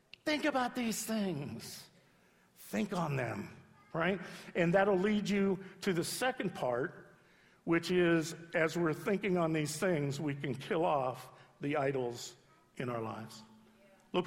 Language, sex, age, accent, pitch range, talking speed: English, male, 50-69, American, 150-195 Hz, 145 wpm